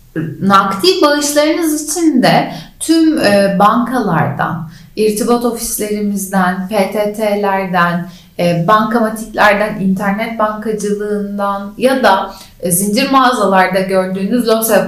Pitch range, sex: 175-240 Hz, female